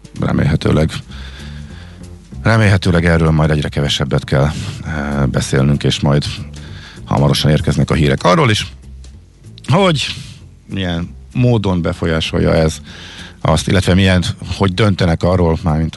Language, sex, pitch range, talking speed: Hungarian, male, 75-100 Hz, 110 wpm